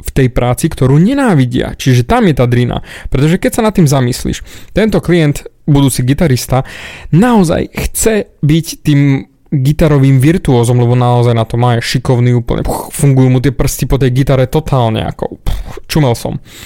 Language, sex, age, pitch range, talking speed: Slovak, male, 20-39, 125-155 Hz, 170 wpm